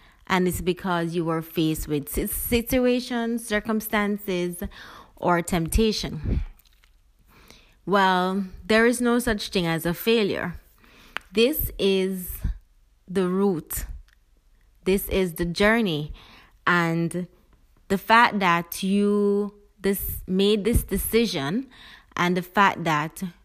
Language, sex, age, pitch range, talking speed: English, female, 20-39, 170-210 Hz, 105 wpm